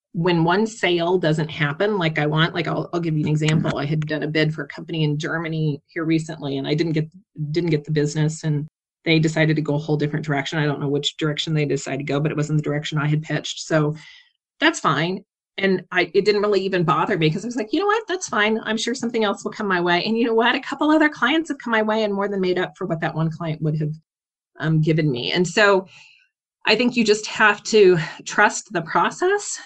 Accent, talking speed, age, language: American, 255 wpm, 30-49, English